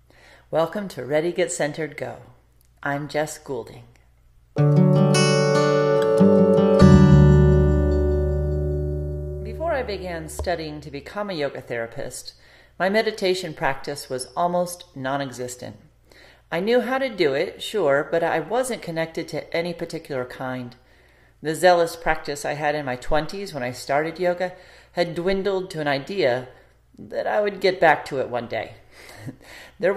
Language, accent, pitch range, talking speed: English, American, 130-180 Hz, 130 wpm